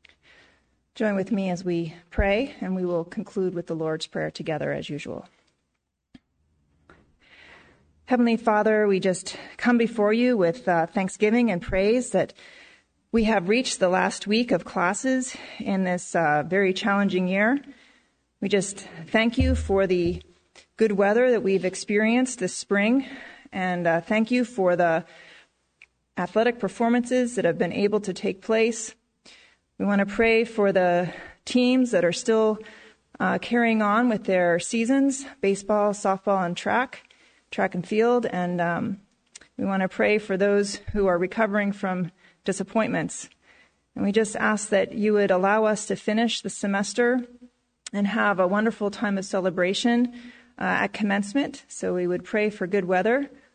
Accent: American